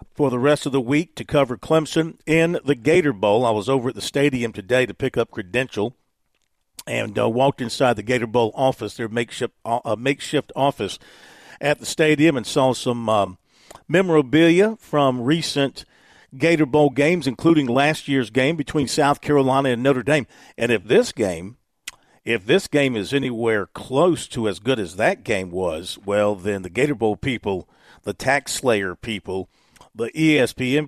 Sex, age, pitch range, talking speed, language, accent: male, 50-69, 110-145 Hz, 175 wpm, English, American